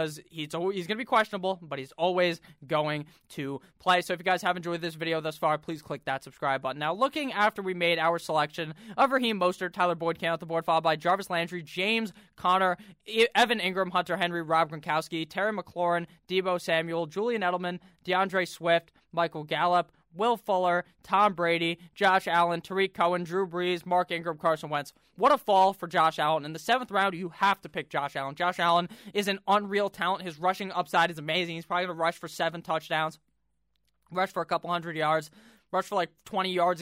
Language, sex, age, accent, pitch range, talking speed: English, male, 20-39, American, 165-200 Hz, 205 wpm